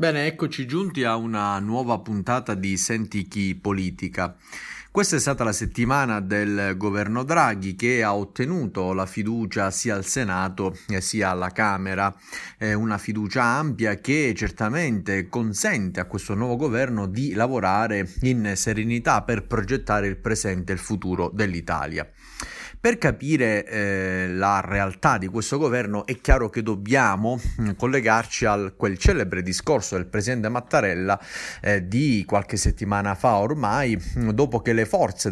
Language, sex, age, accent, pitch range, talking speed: Italian, male, 30-49, native, 100-125 Hz, 135 wpm